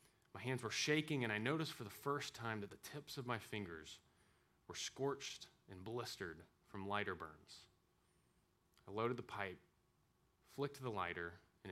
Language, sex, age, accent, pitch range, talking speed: English, male, 30-49, American, 105-140 Hz, 165 wpm